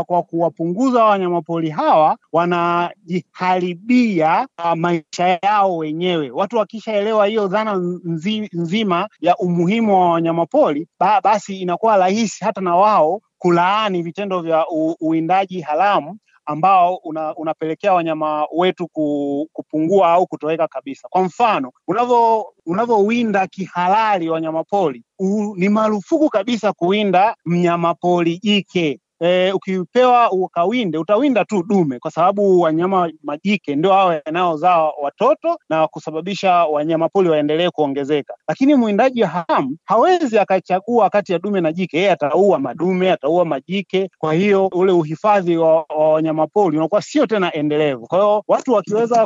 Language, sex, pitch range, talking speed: Swahili, male, 160-210 Hz, 120 wpm